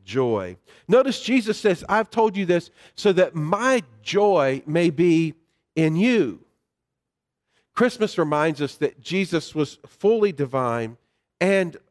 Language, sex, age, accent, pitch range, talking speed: English, male, 40-59, American, 140-190 Hz, 125 wpm